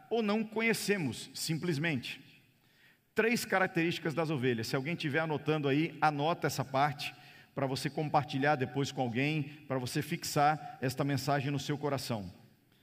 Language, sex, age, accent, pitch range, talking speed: Portuguese, male, 50-69, Brazilian, 155-220 Hz, 140 wpm